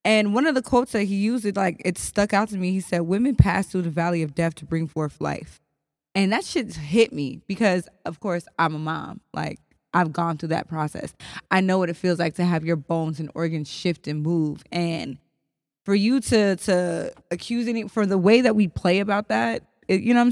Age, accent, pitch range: 20-39, American, 175-220 Hz